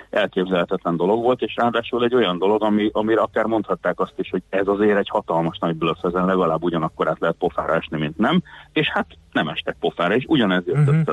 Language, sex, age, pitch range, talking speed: Hungarian, male, 40-59, 90-120 Hz, 205 wpm